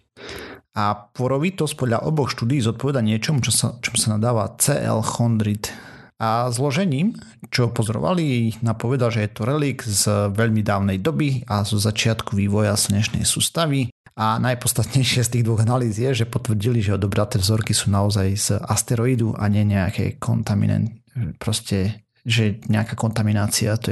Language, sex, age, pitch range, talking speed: Slovak, male, 40-59, 110-125 Hz, 145 wpm